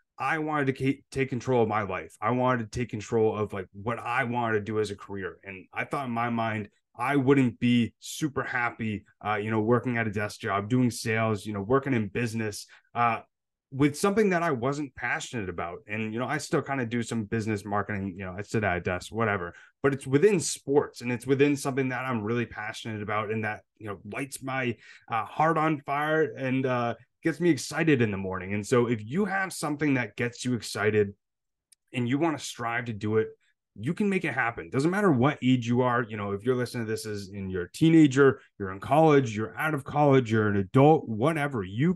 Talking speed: 230 wpm